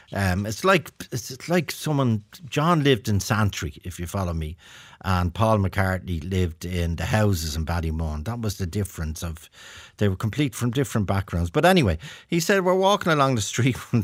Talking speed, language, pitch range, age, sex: 190 wpm, English, 90-130 Hz, 50-69, male